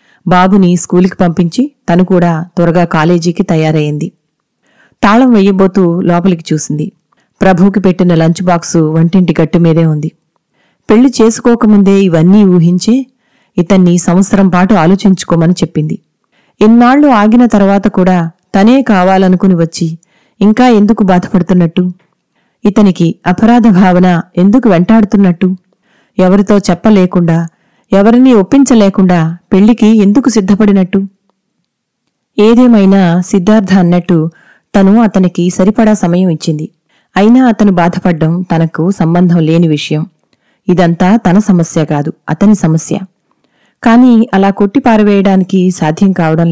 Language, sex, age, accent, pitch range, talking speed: Telugu, female, 30-49, native, 175-210 Hz, 95 wpm